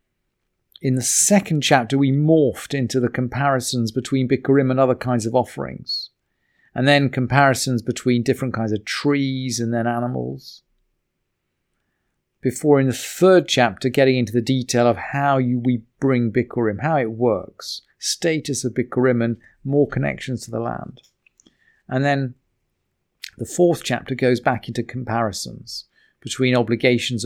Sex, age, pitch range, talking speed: male, 40-59, 115-135 Hz, 140 wpm